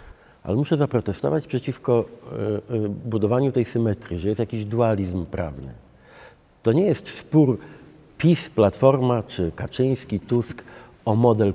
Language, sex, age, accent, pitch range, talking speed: Polish, male, 50-69, native, 110-140 Hz, 120 wpm